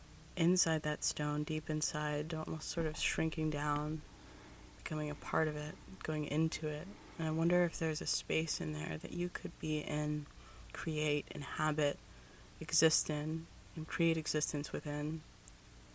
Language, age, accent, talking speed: English, 30-49, American, 150 wpm